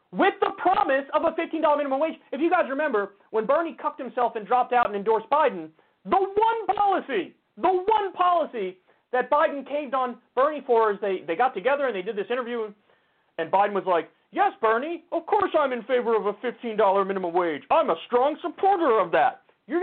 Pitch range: 230-325 Hz